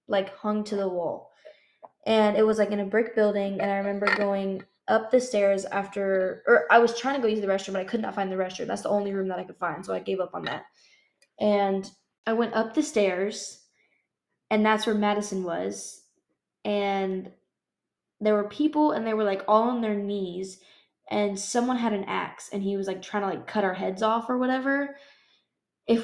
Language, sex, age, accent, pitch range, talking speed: English, female, 10-29, American, 200-230 Hz, 215 wpm